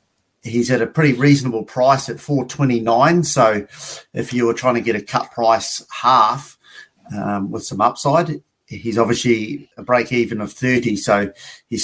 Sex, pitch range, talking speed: male, 100-125 Hz, 160 wpm